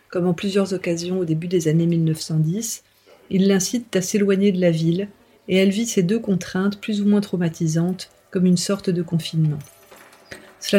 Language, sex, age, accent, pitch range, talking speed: French, female, 40-59, French, 170-195 Hz, 180 wpm